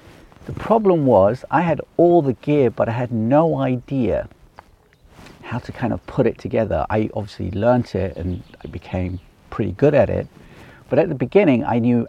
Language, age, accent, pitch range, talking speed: English, 50-69, British, 100-135 Hz, 185 wpm